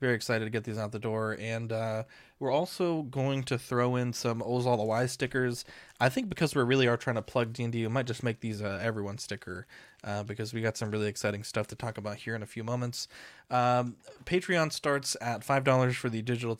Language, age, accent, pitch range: English, 20-39, American, 110-130 Hz